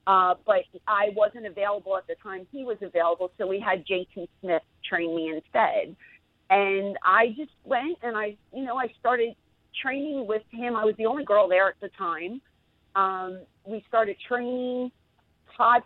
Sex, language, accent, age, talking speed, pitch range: female, English, American, 40-59, 175 wpm, 180-225 Hz